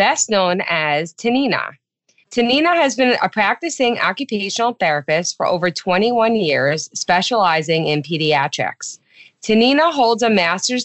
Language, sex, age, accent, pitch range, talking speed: English, female, 30-49, American, 165-220 Hz, 120 wpm